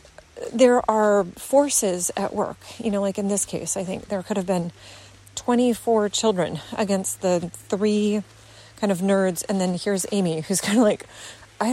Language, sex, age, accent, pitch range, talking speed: English, female, 30-49, American, 195-245 Hz, 175 wpm